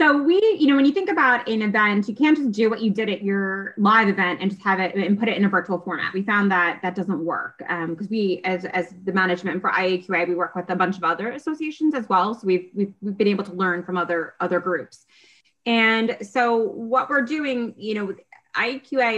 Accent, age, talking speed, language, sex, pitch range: American, 20-39, 245 wpm, English, female, 185-220 Hz